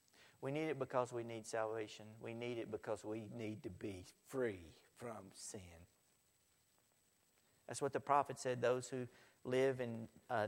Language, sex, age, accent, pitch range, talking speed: English, male, 50-69, American, 110-155 Hz, 160 wpm